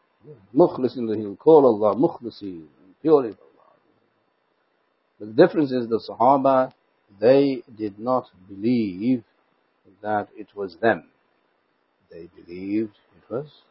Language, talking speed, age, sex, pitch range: English, 95 wpm, 60-79, male, 100-125 Hz